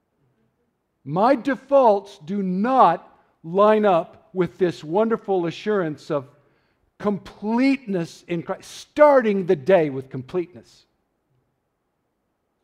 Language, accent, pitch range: English, American, 145-205 Hz